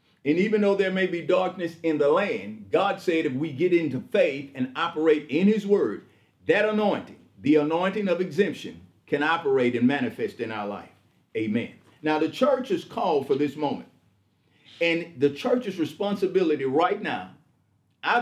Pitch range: 145-215 Hz